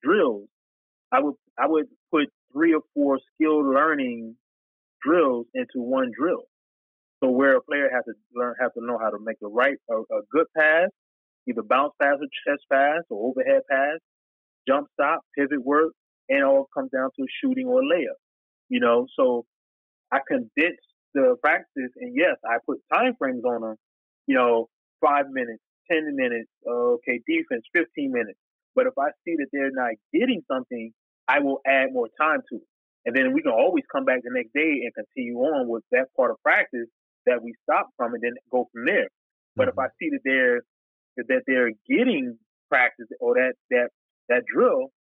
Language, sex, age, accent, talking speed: English, male, 30-49, American, 185 wpm